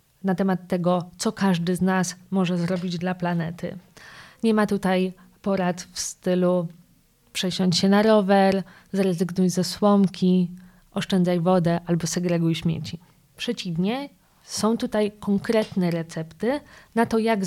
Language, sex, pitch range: Polish, female, 175-205 Hz